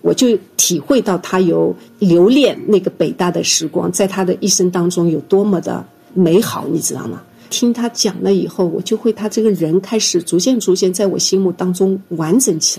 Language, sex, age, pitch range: Chinese, female, 50-69, 175-210 Hz